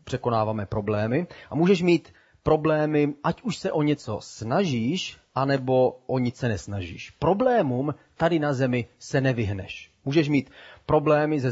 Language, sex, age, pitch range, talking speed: Czech, male, 30-49, 115-150 Hz, 140 wpm